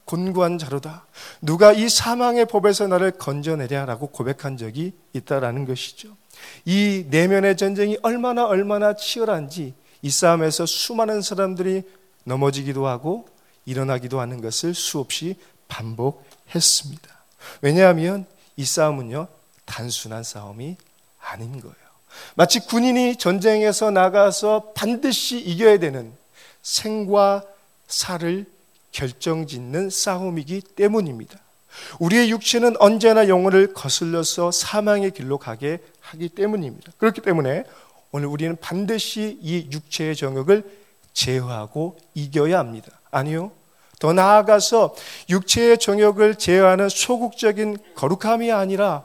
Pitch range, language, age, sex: 150-210 Hz, Korean, 40-59, male